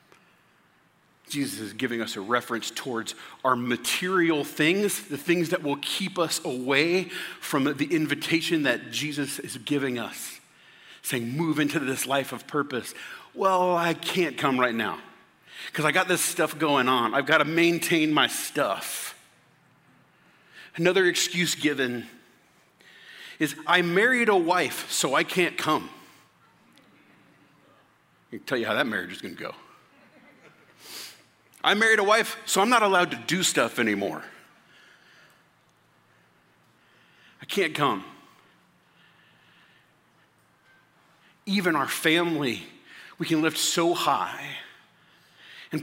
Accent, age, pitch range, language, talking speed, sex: American, 40-59, 130-175 Hz, English, 130 wpm, male